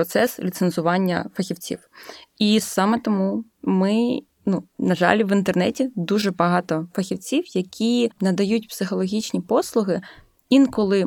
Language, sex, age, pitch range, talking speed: Ukrainian, female, 20-39, 185-240 Hz, 110 wpm